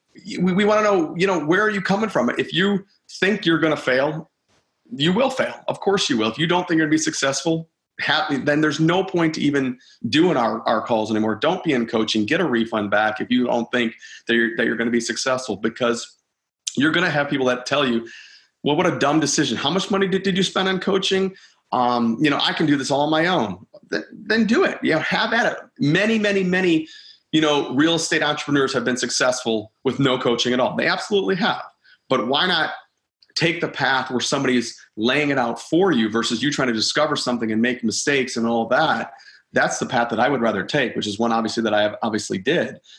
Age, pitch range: 40-59, 120-170 Hz